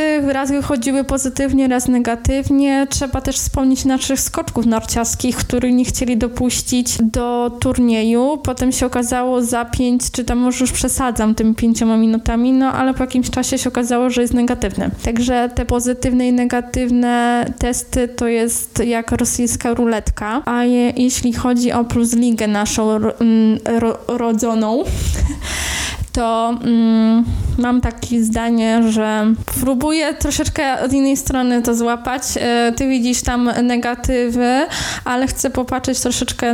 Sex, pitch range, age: female, 230-255 Hz, 20-39